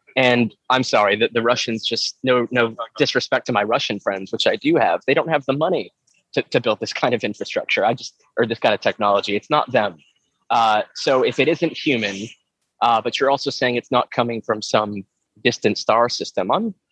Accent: American